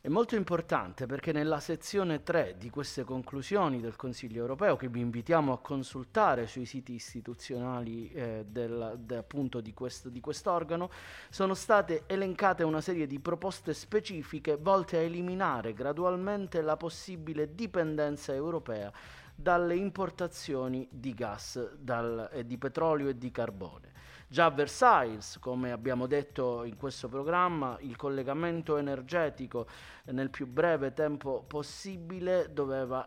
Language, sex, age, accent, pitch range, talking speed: Italian, male, 30-49, native, 120-165 Hz, 125 wpm